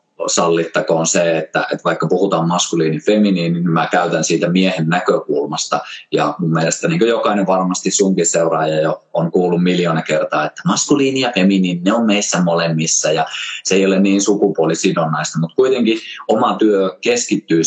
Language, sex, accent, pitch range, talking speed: Finnish, male, native, 80-100 Hz, 155 wpm